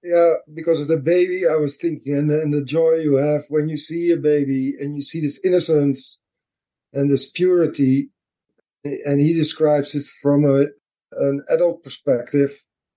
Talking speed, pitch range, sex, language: 160 wpm, 145-175 Hz, male, English